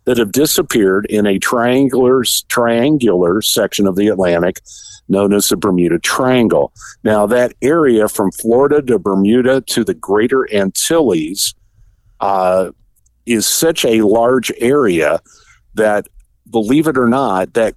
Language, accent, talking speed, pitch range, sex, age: English, American, 130 wpm, 100-125 Hz, male, 50-69